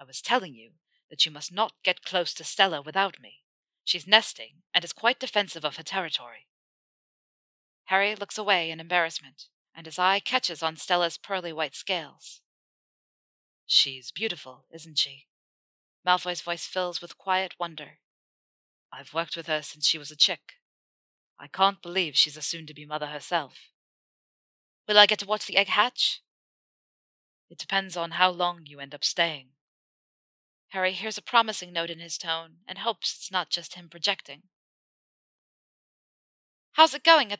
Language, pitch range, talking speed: English, 160-200 Hz, 160 wpm